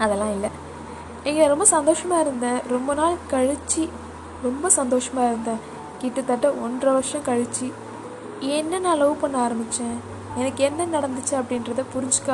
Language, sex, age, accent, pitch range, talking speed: Tamil, female, 20-39, native, 235-285 Hz, 125 wpm